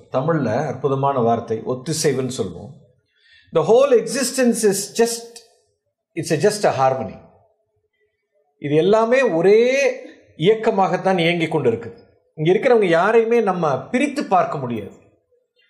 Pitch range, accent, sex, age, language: 175-250 Hz, native, male, 50-69, Tamil